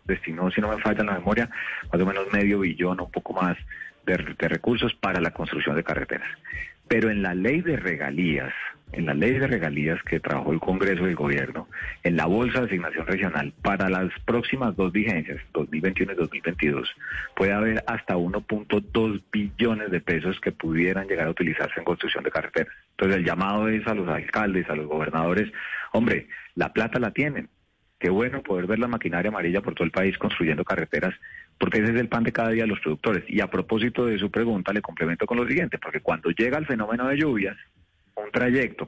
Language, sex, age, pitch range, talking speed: Spanish, male, 40-59, 90-115 Hz, 200 wpm